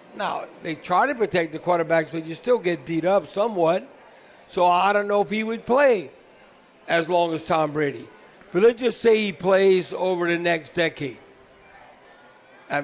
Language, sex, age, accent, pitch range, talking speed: English, male, 60-79, American, 165-200 Hz, 180 wpm